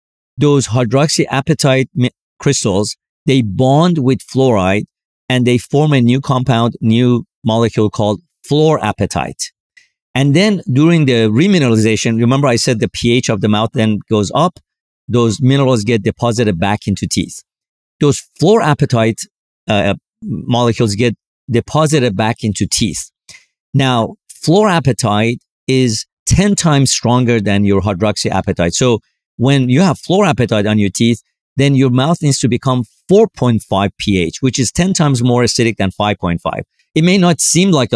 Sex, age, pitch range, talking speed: male, 50-69, 110-140 Hz, 140 wpm